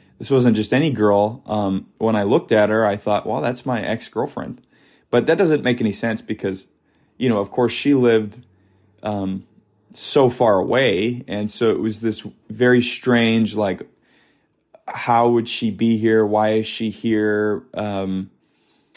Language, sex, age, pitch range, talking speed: English, male, 20-39, 105-120 Hz, 165 wpm